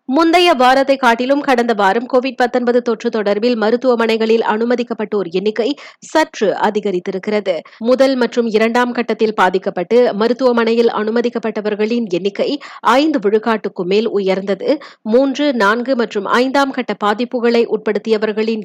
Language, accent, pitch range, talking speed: Tamil, native, 215-260 Hz, 105 wpm